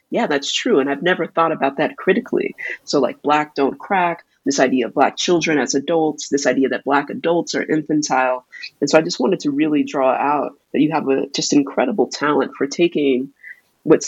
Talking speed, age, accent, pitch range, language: 200 wpm, 30-49, American, 140-170 Hz, English